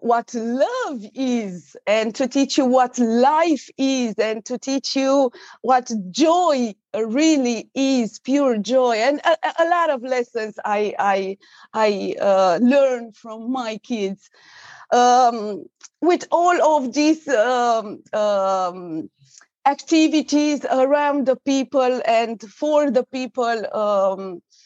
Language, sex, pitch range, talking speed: English, female, 215-280 Hz, 120 wpm